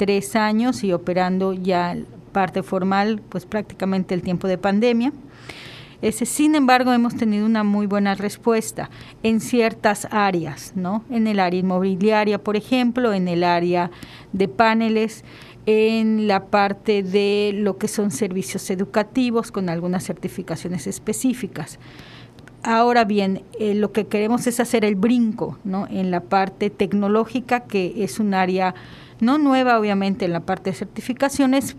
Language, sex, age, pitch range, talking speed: Spanish, female, 40-59, 195-235 Hz, 145 wpm